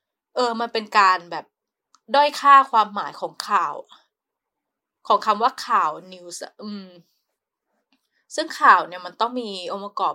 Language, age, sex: Thai, 20-39, female